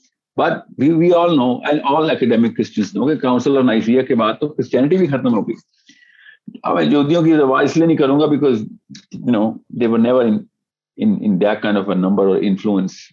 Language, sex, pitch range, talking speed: Urdu, male, 125-180 Hz, 135 wpm